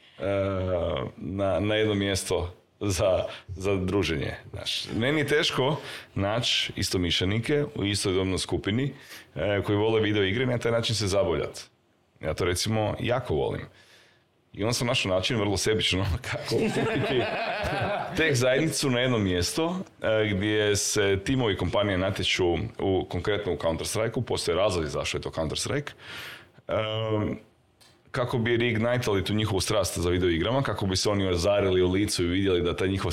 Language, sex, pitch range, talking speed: Croatian, male, 90-115 Hz, 150 wpm